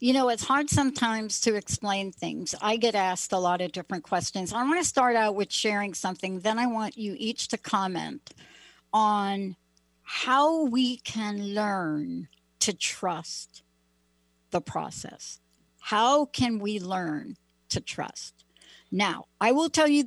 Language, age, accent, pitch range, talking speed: English, 60-79, American, 185-235 Hz, 155 wpm